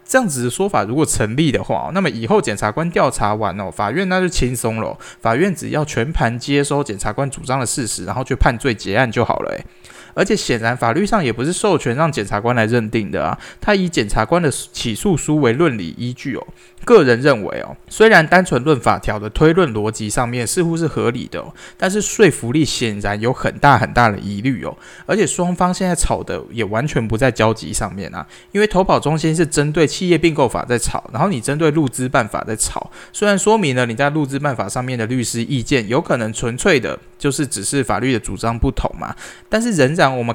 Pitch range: 115-160 Hz